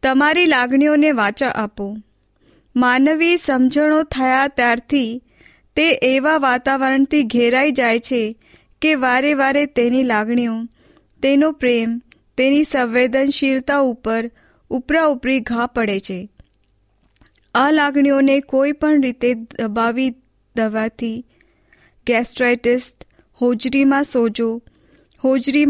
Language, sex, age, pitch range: Hindi, female, 20-39, 230-280 Hz